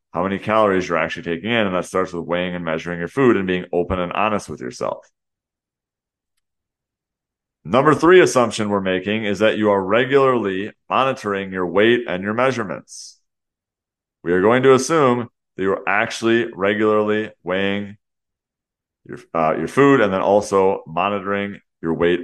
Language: English